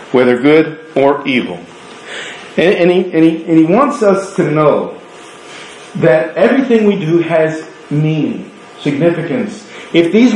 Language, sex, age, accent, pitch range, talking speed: English, male, 40-59, American, 200-260 Hz, 140 wpm